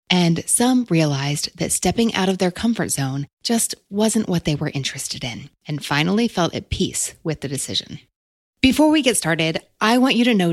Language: English